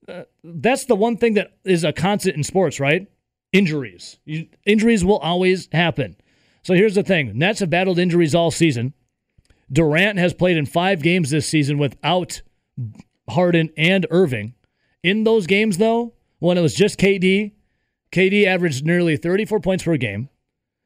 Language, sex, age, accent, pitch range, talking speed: English, male, 40-59, American, 130-180 Hz, 160 wpm